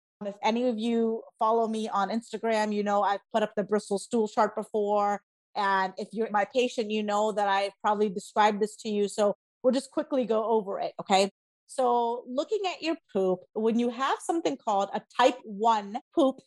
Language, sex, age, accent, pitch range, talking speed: English, female, 30-49, American, 205-255 Hz, 195 wpm